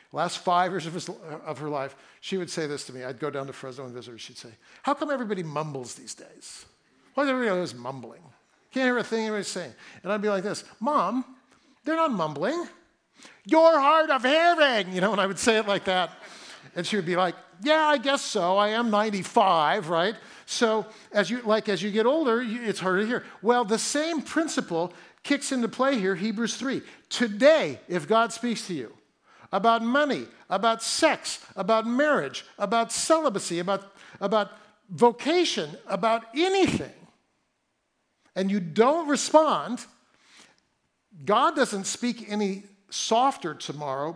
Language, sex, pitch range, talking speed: English, male, 180-260 Hz, 175 wpm